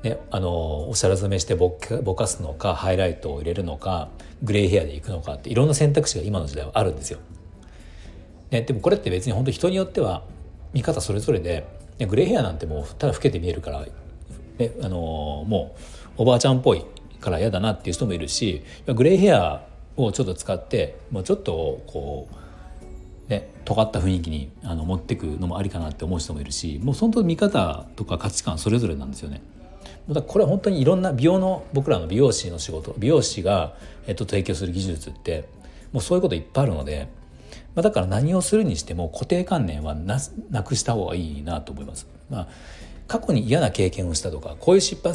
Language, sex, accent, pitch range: Japanese, male, native, 80-120 Hz